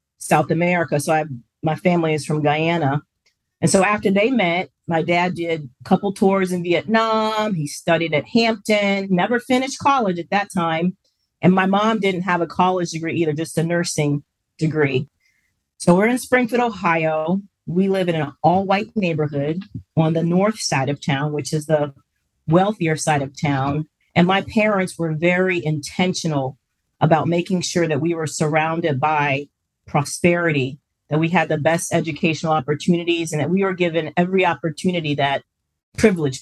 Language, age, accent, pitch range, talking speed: English, 40-59, American, 150-185 Hz, 165 wpm